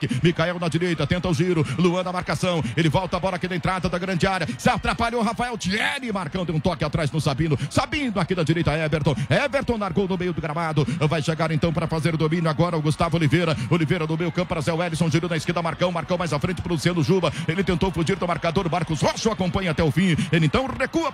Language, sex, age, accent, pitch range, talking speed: English, male, 50-69, Brazilian, 160-190 Hz, 235 wpm